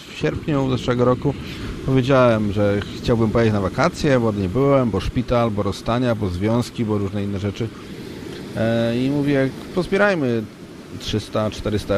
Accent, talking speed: native, 135 wpm